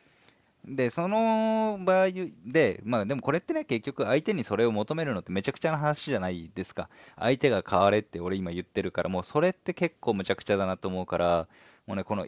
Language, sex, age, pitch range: Japanese, male, 20-39, 95-135 Hz